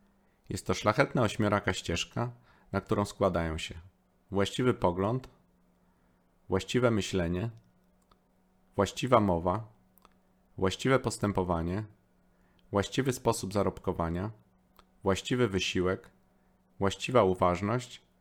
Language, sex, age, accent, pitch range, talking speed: Polish, male, 30-49, native, 90-115 Hz, 80 wpm